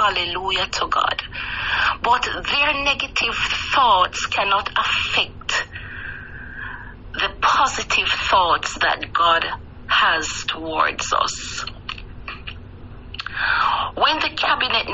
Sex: female